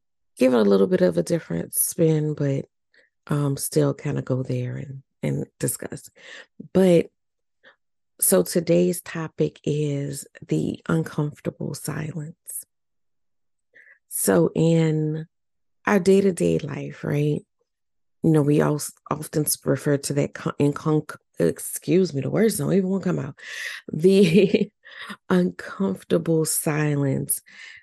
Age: 40-59